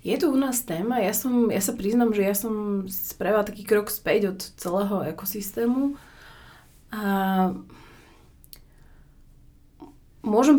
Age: 20-39